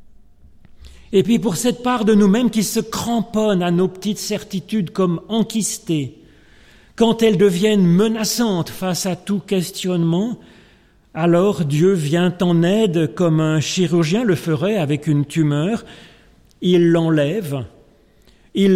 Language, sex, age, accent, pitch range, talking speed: French, male, 40-59, French, 165-205 Hz, 130 wpm